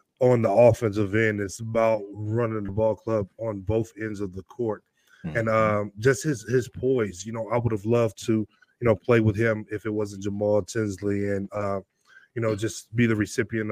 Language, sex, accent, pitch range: English, male, American, 105-115 Hz